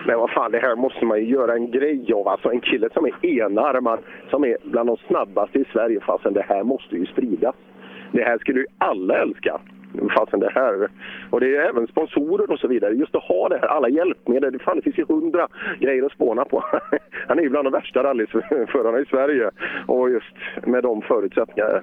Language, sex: Swedish, male